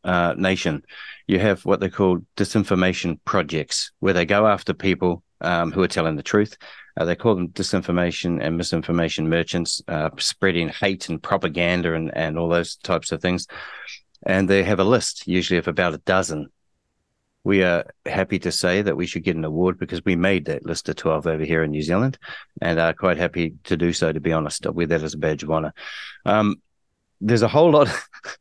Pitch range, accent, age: 85-100 Hz, Australian, 30-49